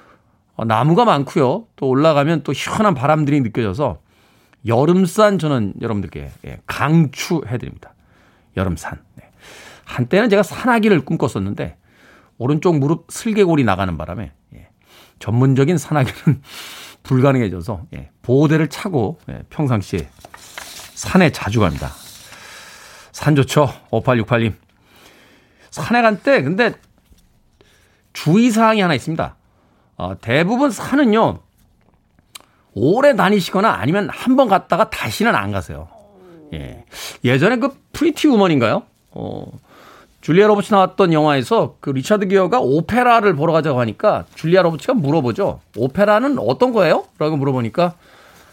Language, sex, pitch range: Korean, male, 115-190 Hz